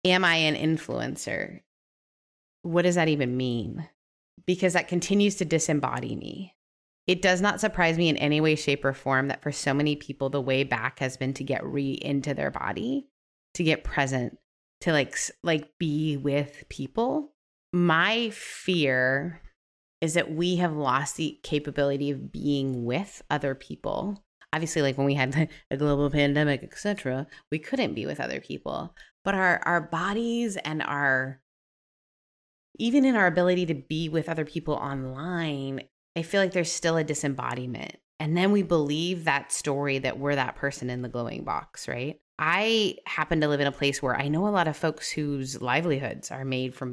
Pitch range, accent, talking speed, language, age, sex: 135-175 Hz, American, 175 wpm, English, 30-49, female